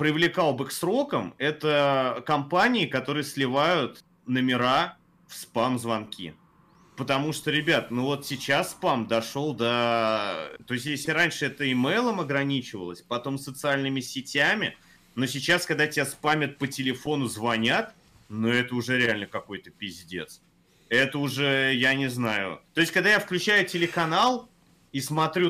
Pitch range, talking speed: 130-160 Hz, 135 wpm